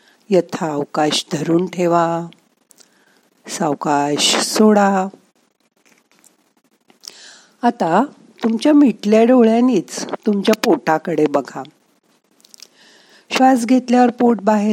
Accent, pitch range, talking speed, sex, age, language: native, 190-235 Hz, 55 wpm, female, 50-69, Marathi